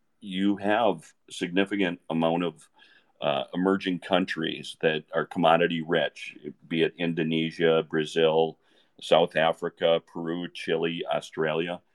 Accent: American